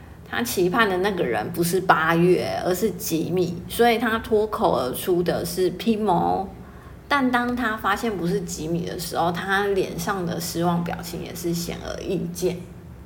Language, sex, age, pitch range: Chinese, female, 30-49, 170-205 Hz